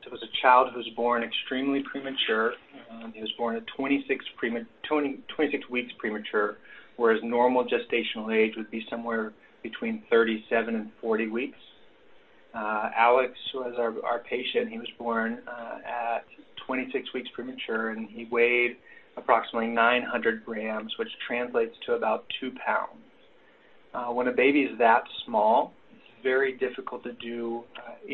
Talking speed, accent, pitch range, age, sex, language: 145 wpm, American, 115-140 Hz, 30-49, male, English